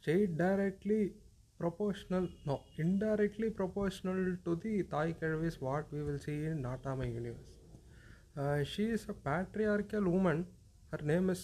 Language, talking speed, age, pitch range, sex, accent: Tamil, 135 wpm, 30-49, 140-185 Hz, male, native